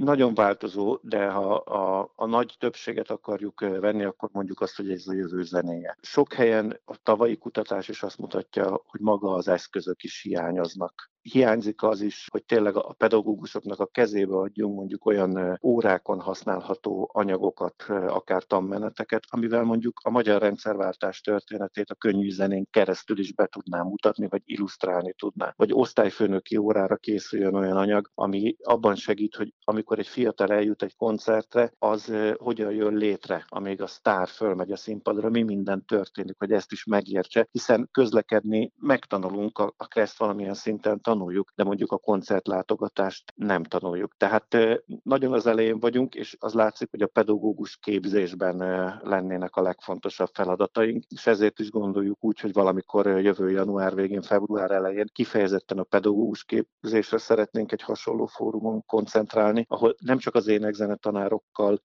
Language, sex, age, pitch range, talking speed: Hungarian, male, 50-69, 100-110 Hz, 150 wpm